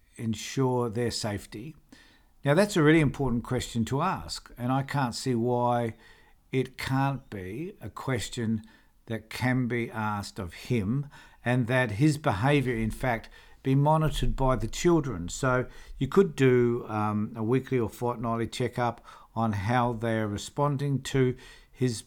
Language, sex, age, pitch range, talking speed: English, male, 60-79, 110-135 Hz, 145 wpm